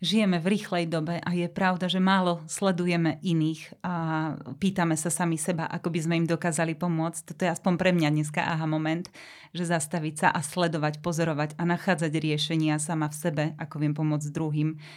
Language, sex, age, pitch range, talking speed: Slovak, female, 30-49, 155-180 Hz, 185 wpm